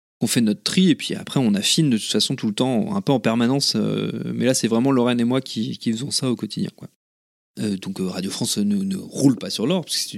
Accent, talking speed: French, 275 wpm